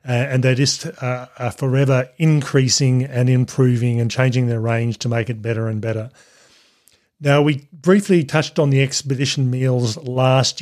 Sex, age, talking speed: male, 40-59, 155 wpm